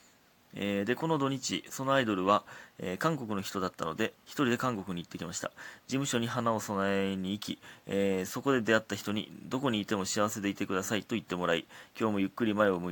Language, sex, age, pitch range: Japanese, male, 30-49, 90-115 Hz